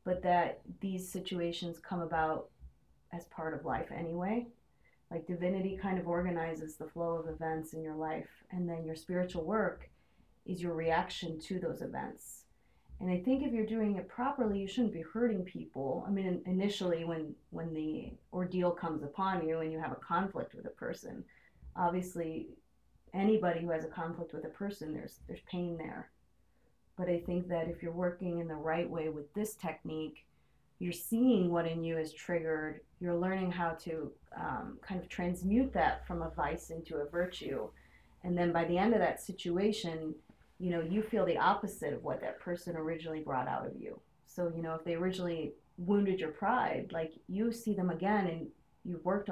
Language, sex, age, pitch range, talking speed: English, female, 30-49, 160-185 Hz, 185 wpm